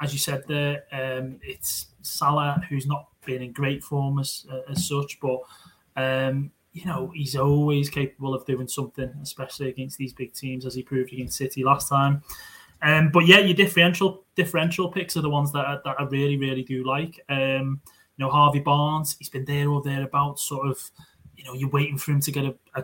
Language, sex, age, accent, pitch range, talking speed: English, male, 20-39, British, 130-145 Hz, 210 wpm